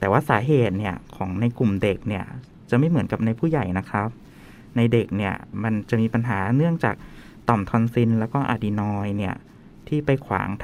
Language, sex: Thai, male